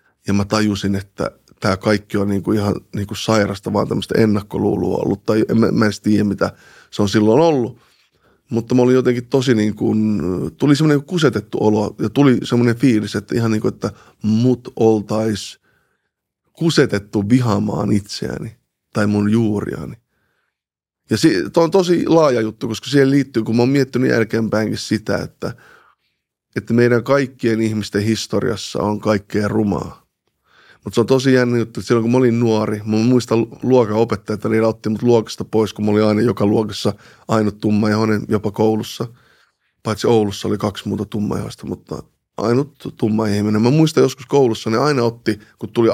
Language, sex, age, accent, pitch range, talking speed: Finnish, male, 20-39, native, 105-120 Hz, 170 wpm